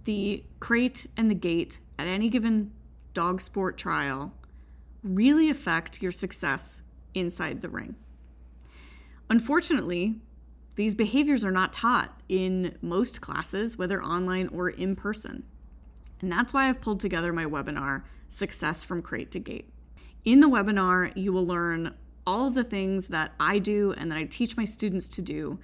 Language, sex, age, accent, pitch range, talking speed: English, female, 20-39, American, 165-225 Hz, 155 wpm